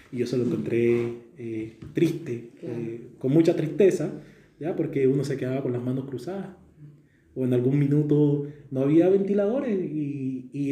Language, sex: Spanish, male